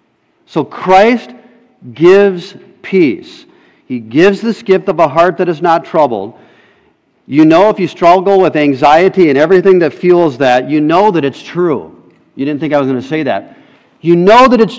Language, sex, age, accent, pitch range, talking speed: English, male, 40-59, American, 170-245 Hz, 185 wpm